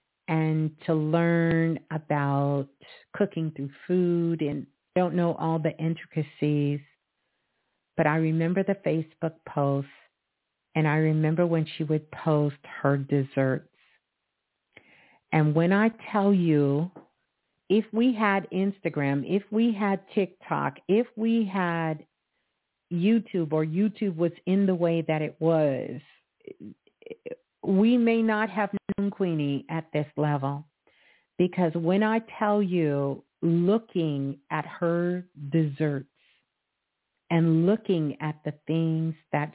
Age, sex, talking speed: 50-69, female, 115 wpm